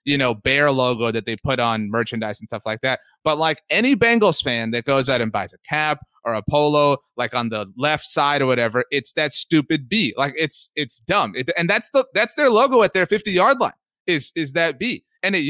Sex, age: male, 30-49